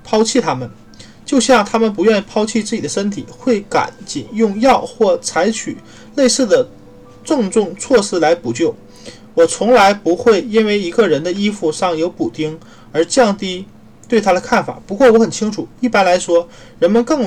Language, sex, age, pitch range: Chinese, male, 20-39, 170-240 Hz